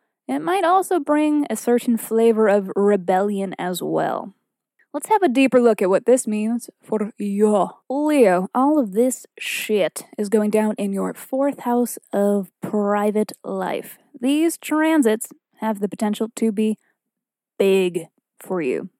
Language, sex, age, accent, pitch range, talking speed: English, female, 20-39, American, 205-265 Hz, 150 wpm